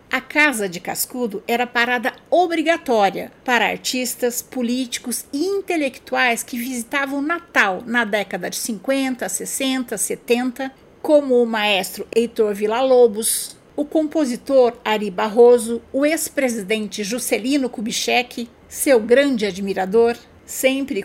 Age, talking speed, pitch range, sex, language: 60-79, 110 wpm, 230-295 Hz, female, Portuguese